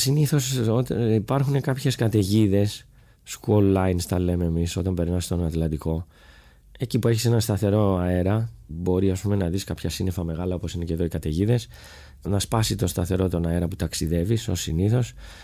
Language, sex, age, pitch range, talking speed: Greek, male, 20-39, 85-115 Hz, 165 wpm